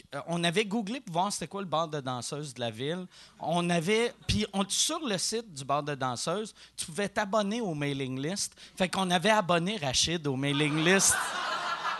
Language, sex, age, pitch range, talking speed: French, male, 30-49, 165-240 Hz, 190 wpm